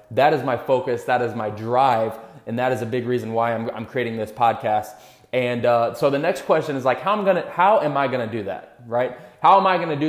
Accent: American